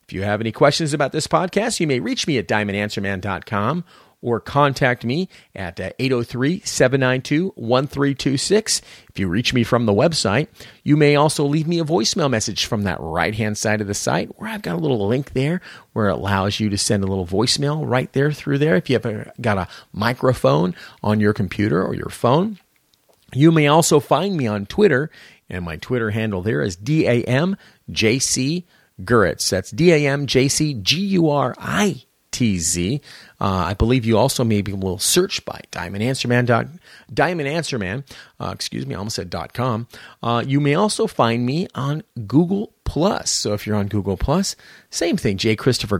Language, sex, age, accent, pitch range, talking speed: English, male, 40-59, American, 105-150 Hz, 170 wpm